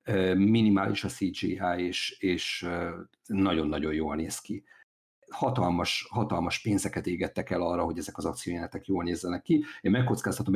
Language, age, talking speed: Hungarian, 50-69, 135 wpm